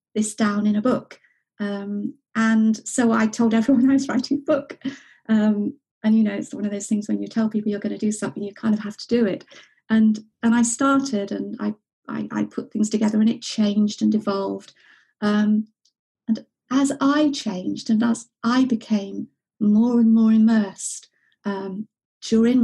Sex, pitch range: female, 215-250 Hz